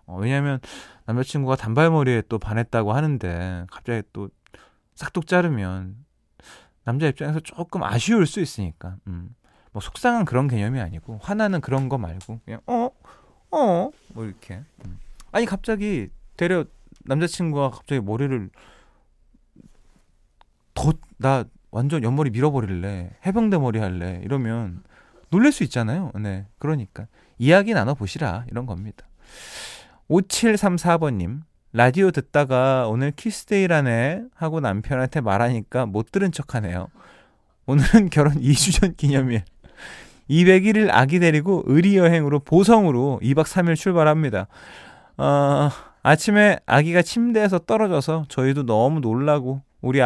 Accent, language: native, Korean